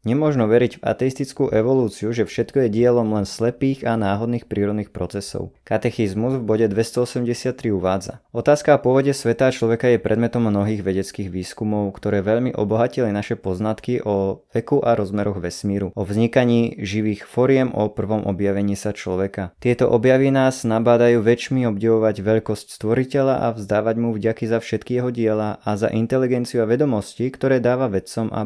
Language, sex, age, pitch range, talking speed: Slovak, male, 20-39, 105-125 Hz, 155 wpm